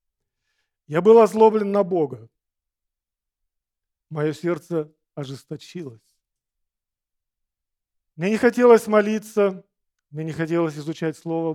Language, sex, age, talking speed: Russian, male, 40-59, 90 wpm